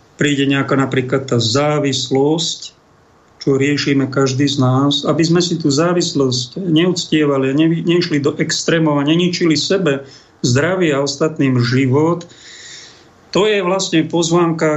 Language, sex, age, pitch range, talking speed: Slovak, male, 50-69, 135-165 Hz, 130 wpm